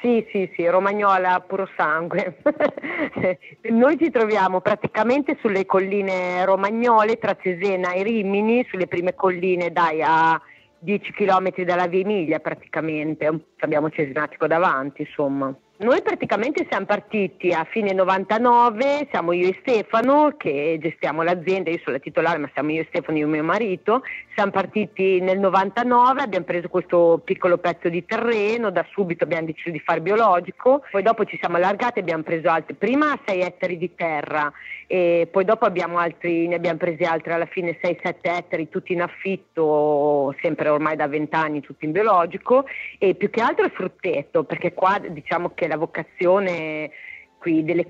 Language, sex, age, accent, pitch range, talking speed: Italian, female, 40-59, native, 160-195 Hz, 160 wpm